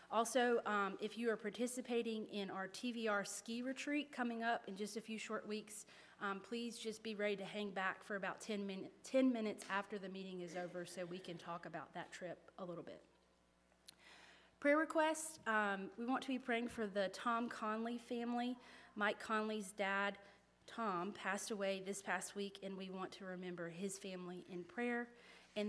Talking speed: 185 wpm